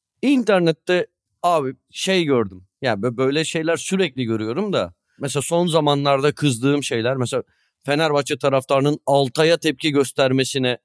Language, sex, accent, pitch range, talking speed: Turkish, male, native, 130-170 Hz, 120 wpm